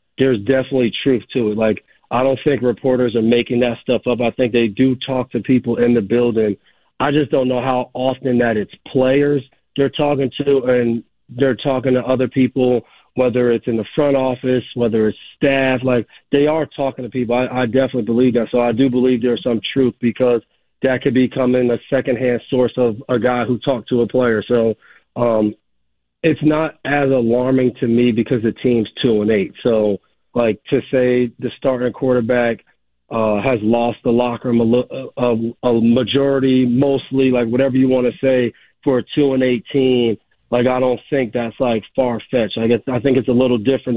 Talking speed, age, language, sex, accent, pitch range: 200 wpm, 40-59, English, male, American, 120-130 Hz